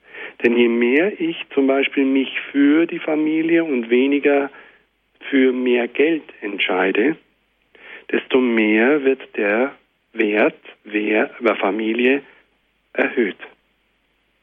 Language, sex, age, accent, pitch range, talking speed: German, male, 60-79, German, 125-175 Hz, 100 wpm